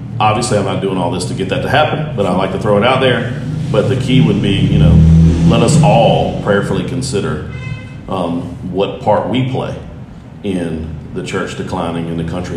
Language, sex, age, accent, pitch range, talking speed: English, male, 40-59, American, 90-110 Hz, 205 wpm